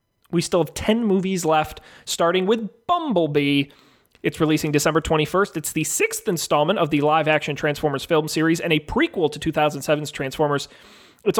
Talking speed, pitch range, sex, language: 160 wpm, 135-170 Hz, male, English